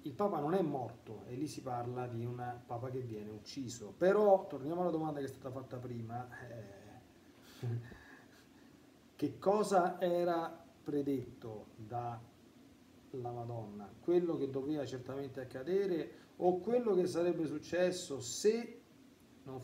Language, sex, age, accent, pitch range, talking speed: Italian, male, 40-59, native, 120-150 Hz, 130 wpm